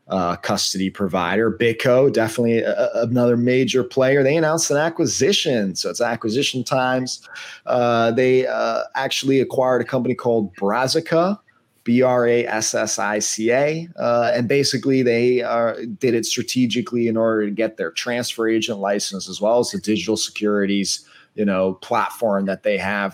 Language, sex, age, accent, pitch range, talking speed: English, male, 30-49, American, 105-125 Hz, 160 wpm